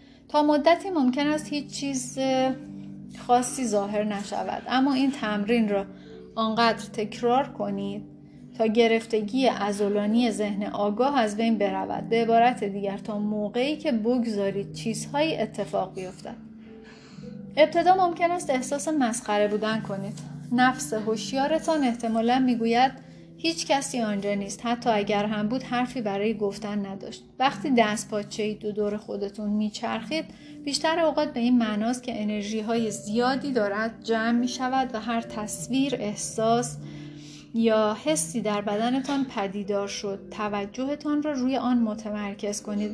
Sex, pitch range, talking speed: female, 205-255 Hz, 130 wpm